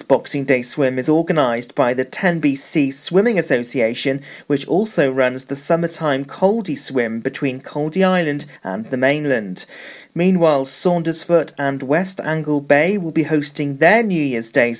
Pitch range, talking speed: 130-170 Hz, 150 wpm